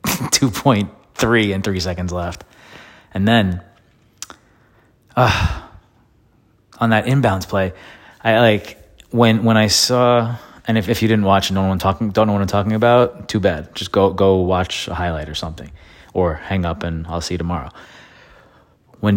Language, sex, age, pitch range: English, male, 20-39, 90-115 Hz